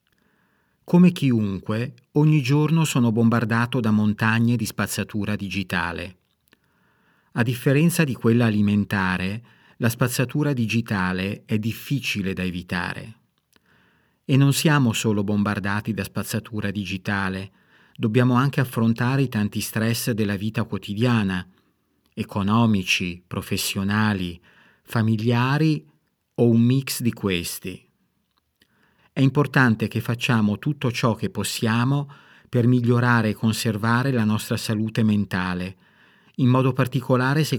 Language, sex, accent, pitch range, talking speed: Italian, male, native, 105-125 Hz, 110 wpm